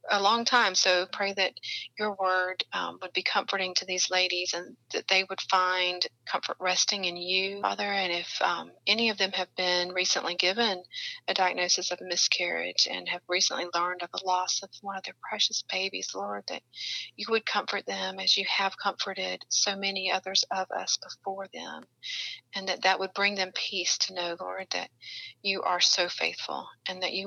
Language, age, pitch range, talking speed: English, 40-59, 180-210 Hz, 195 wpm